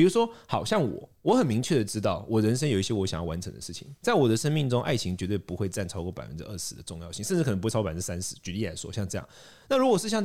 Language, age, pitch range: Chinese, 30-49, 95-150 Hz